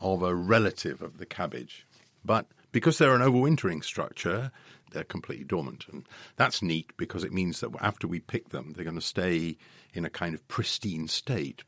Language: English